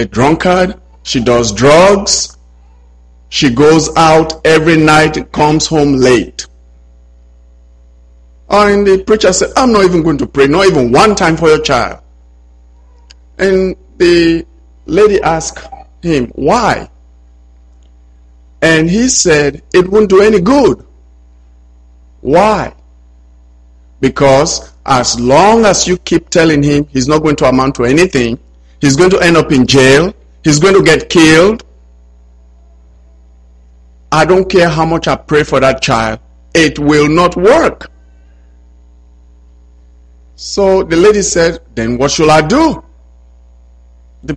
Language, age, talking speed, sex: English, 50-69, 130 wpm, male